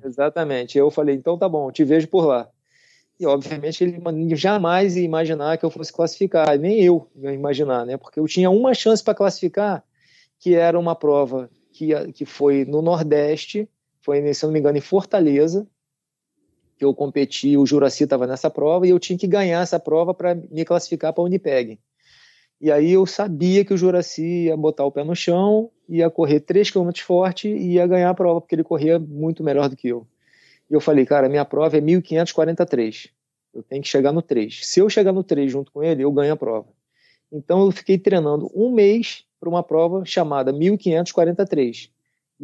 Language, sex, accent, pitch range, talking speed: Portuguese, male, Brazilian, 140-180 Hz, 190 wpm